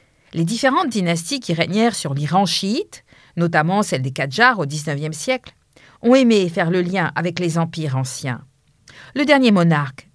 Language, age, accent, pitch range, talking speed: French, 50-69, French, 145-220 Hz, 160 wpm